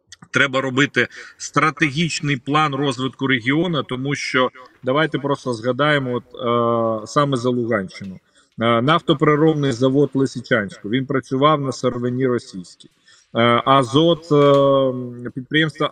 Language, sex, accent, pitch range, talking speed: Ukrainian, male, native, 125-150 Hz, 90 wpm